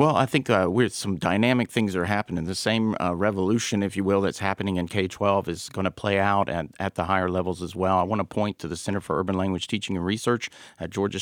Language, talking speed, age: English, 255 wpm, 50-69